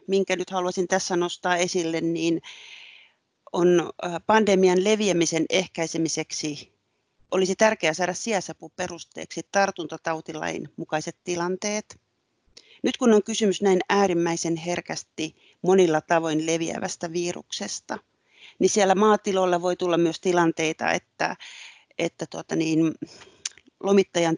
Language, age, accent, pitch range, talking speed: Finnish, 40-59, native, 165-195 Hz, 105 wpm